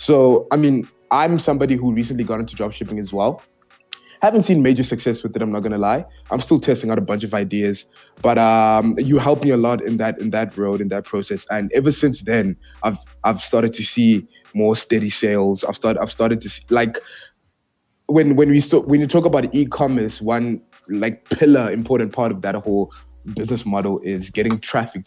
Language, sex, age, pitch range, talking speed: English, male, 20-39, 105-145 Hz, 205 wpm